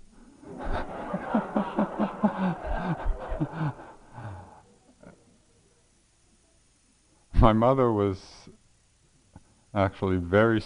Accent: American